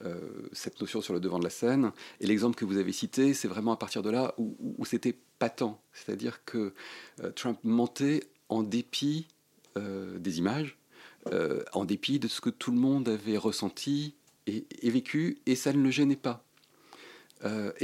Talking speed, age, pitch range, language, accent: 185 wpm, 40-59, 110-135 Hz, French, French